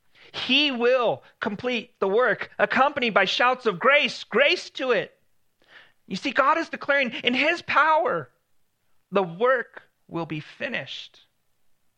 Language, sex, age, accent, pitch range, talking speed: English, male, 40-59, American, 140-215 Hz, 130 wpm